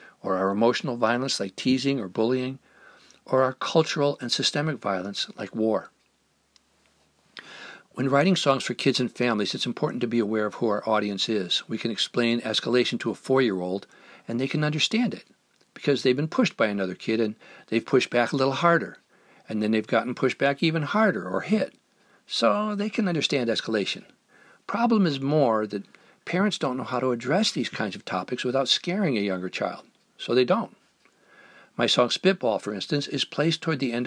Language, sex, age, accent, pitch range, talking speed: English, male, 60-79, American, 115-155 Hz, 185 wpm